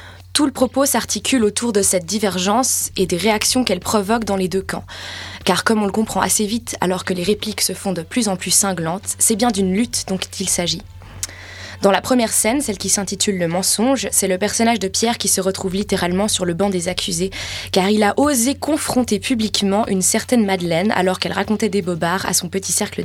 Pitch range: 180-225 Hz